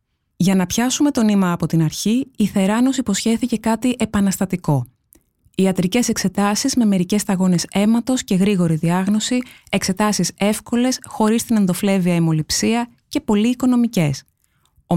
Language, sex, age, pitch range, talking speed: Greek, female, 20-39, 175-230 Hz, 130 wpm